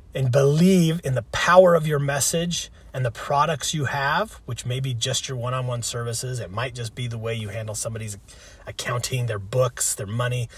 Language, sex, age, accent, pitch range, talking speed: English, male, 30-49, American, 105-150 Hz, 195 wpm